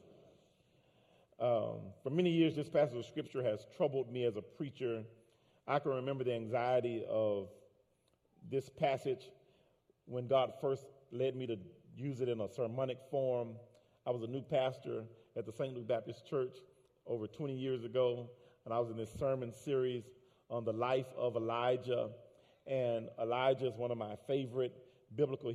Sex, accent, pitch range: male, American, 120-135 Hz